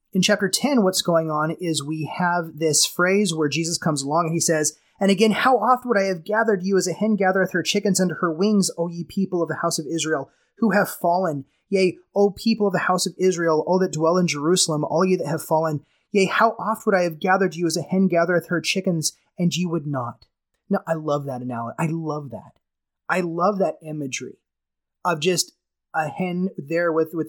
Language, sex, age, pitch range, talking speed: English, male, 30-49, 155-185 Hz, 225 wpm